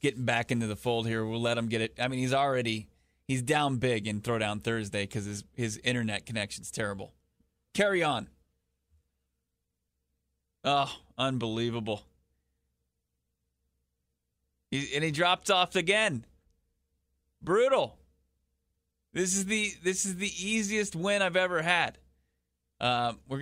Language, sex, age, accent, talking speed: English, male, 30-49, American, 135 wpm